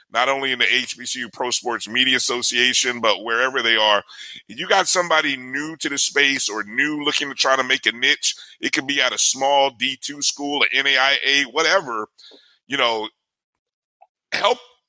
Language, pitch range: English, 110-140 Hz